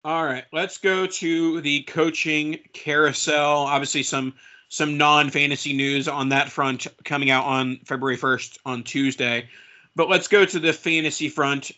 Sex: male